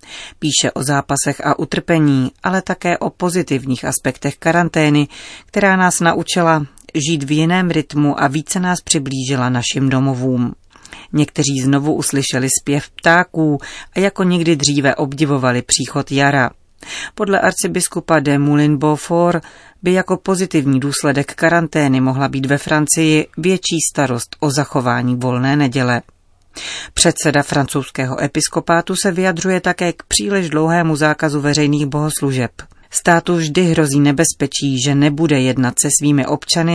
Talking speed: 125 wpm